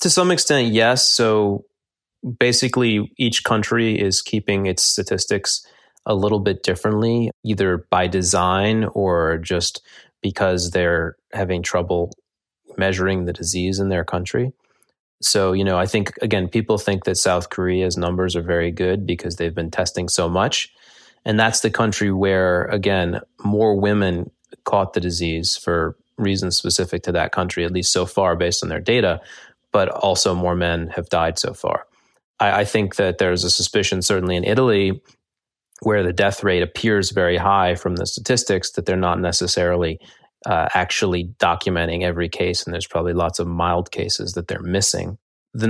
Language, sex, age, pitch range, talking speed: English, male, 20-39, 90-105 Hz, 165 wpm